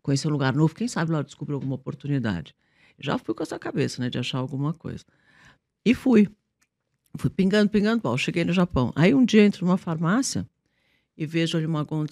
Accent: Brazilian